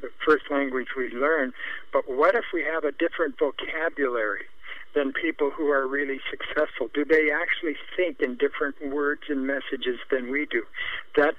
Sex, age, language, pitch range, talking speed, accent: male, 60-79, English, 135-160 Hz, 170 wpm, American